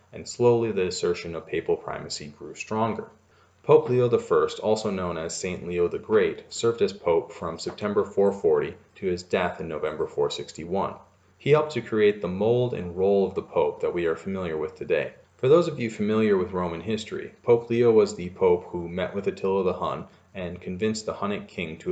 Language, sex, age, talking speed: English, male, 30-49, 200 wpm